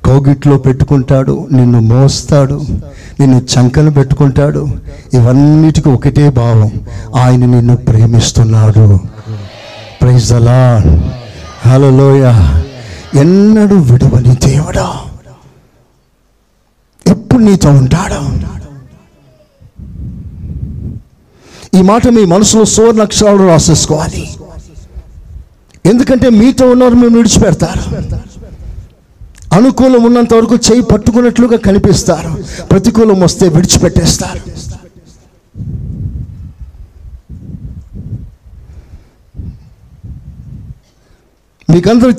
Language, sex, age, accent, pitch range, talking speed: Telugu, male, 50-69, native, 125-180 Hz, 60 wpm